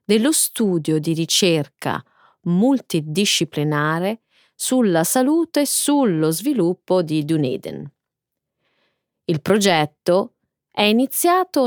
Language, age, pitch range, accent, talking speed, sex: Italian, 30-49, 170-275 Hz, native, 80 wpm, female